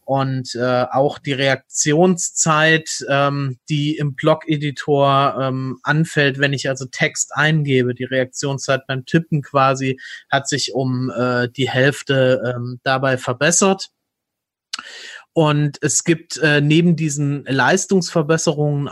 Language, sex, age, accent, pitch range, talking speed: German, male, 30-49, German, 130-170 Hz, 115 wpm